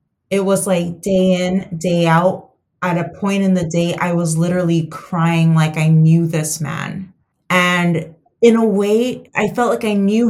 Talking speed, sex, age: 180 wpm, female, 20-39